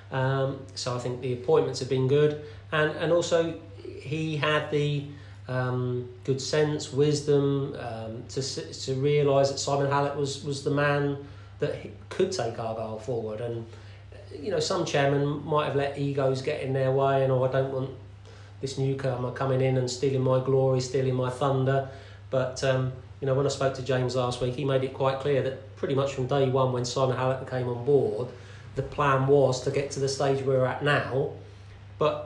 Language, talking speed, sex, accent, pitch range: English, 195 wpm, male, British, 125-140 Hz